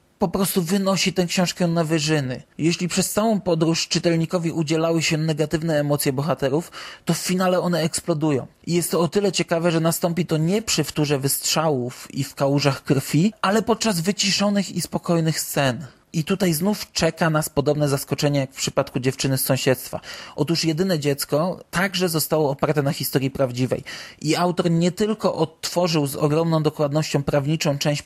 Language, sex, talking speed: Polish, male, 165 wpm